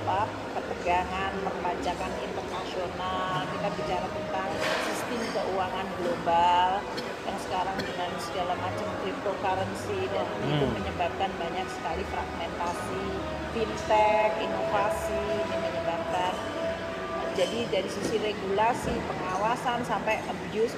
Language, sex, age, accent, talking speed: Indonesian, female, 30-49, native, 95 wpm